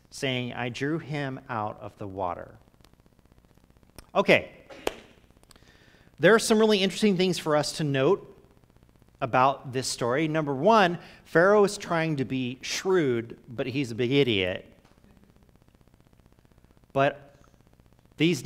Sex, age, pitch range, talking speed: male, 40-59, 120-165 Hz, 120 wpm